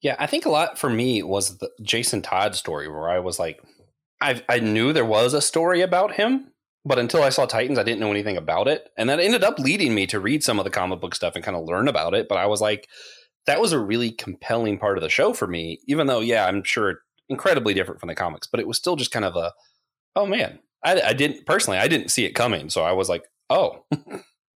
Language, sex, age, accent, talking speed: English, male, 30-49, American, 255 wpm